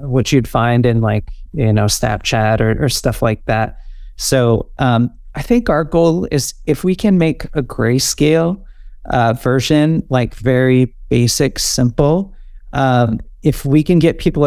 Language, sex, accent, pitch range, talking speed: English, male, American, 115-140 Hz, 160 wpm